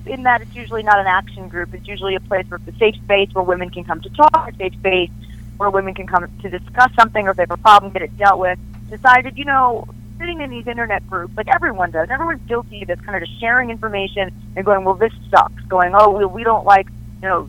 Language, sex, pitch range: English, female, 175-225 Hz